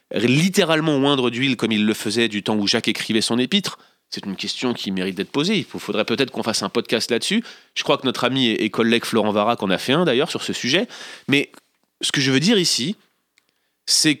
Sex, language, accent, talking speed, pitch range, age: male, French, French, 230 wpm, 110-135 Hz, 30-49